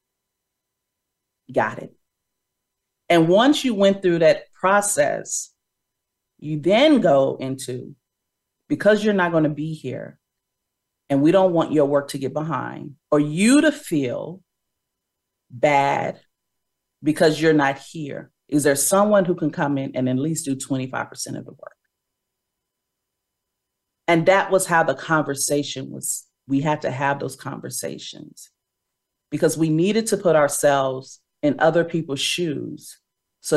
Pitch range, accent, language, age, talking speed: 140-180 Hz, American, English, 40-59, 140 wpm